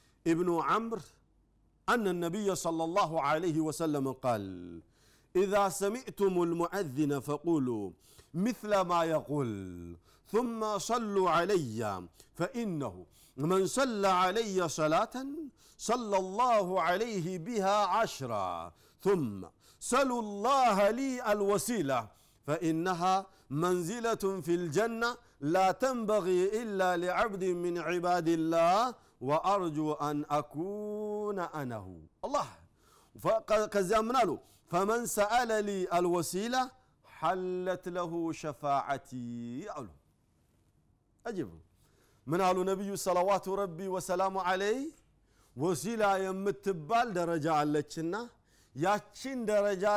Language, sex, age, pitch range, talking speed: Amharic, male, 50-69, 155-205 Hz, 90 wpm